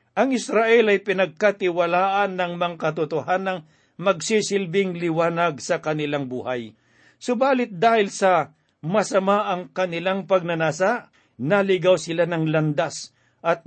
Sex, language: male, Filipino